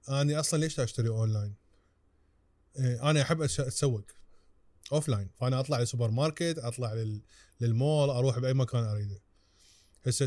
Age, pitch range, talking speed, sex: 20-39, 115-150 Hz, 115 wpm, male